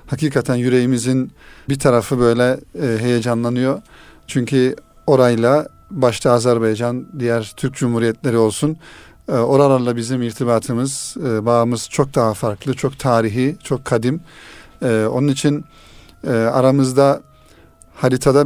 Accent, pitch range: native, 120-135 Hz